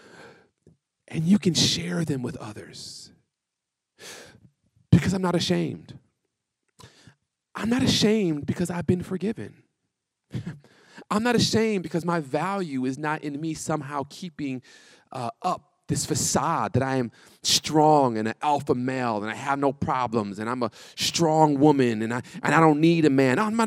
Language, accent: English, American